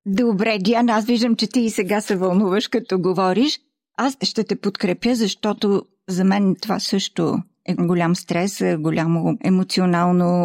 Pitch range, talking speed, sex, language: 185-230 Hz, 150 wpm, female, Bulgarian